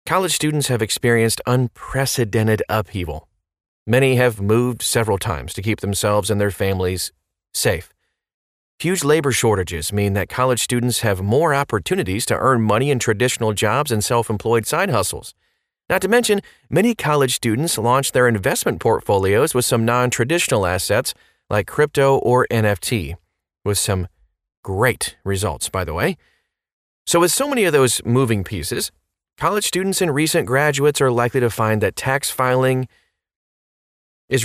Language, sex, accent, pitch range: English, male, American, 100-135 Hz